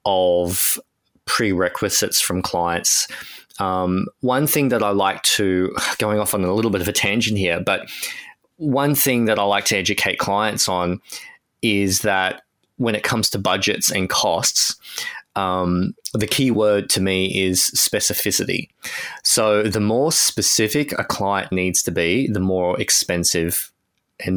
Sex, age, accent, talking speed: male, 20-39, Australian, 150 wpm